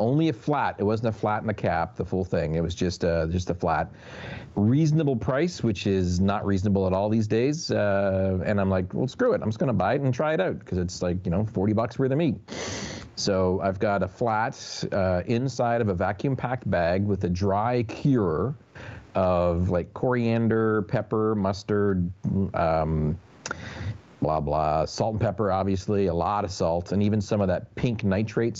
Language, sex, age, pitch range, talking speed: English, male, 40-59, 90-115 Hz, 200 wpm